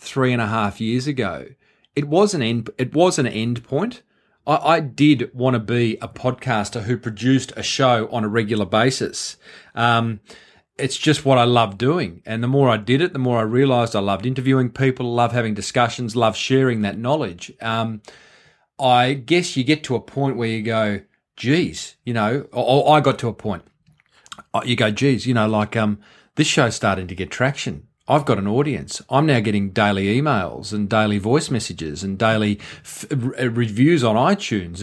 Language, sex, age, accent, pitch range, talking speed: English, male, 40-59, Australian, 110-135 Hz, 190 wpm